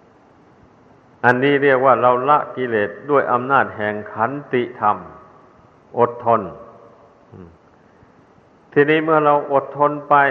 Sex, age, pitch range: male, 60-79, 115-140 Hz